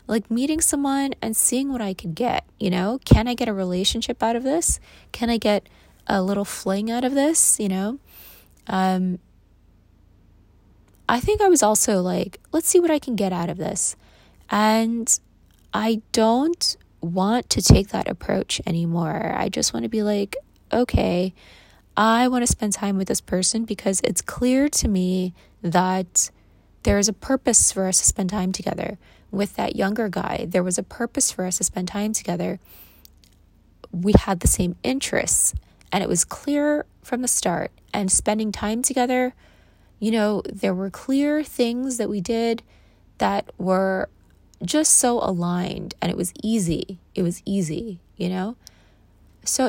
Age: 20-39